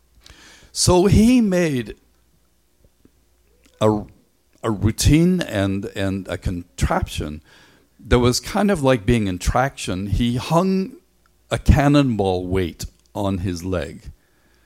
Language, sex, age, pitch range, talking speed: English, male, 50-69, 85-125 Hz, 105 wpm